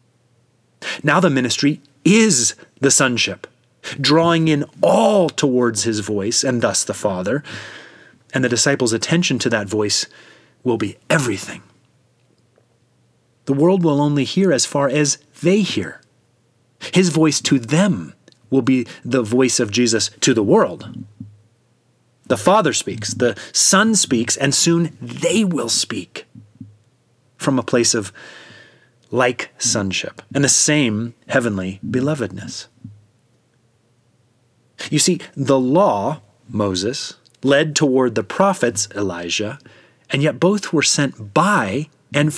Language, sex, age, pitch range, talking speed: English, male, 30-49, 120-150 Hz, 125 wpm